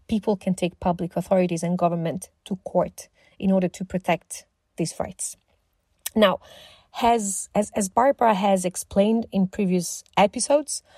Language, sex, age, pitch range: English, female, 40-59, 180-215 Hz